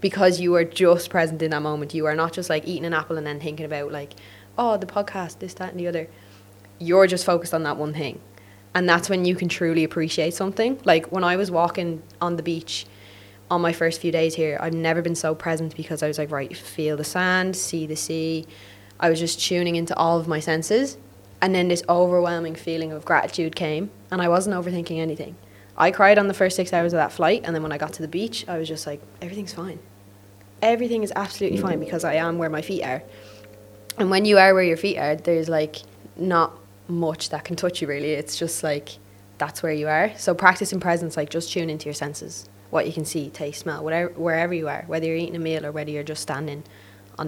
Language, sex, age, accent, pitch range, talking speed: English, female, 20-39, Irish, 145-175 Hz, 235 wpm